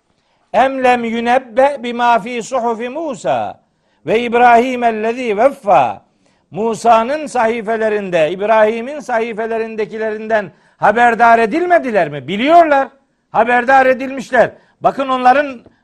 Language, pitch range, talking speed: Turkish, 170-245 Hz, 85 wpm